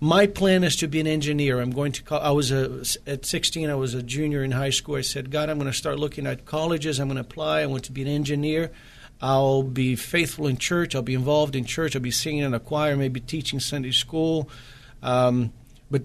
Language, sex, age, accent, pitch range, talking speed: English, male, 50-69, American, 130-155 Hz, 245 wpm